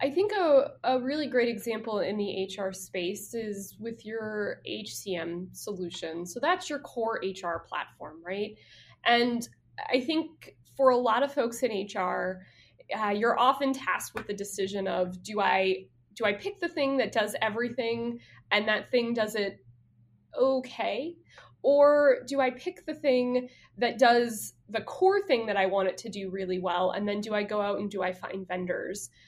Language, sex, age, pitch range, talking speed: English, female, 20-39, 195-250 Hz, 180 wpm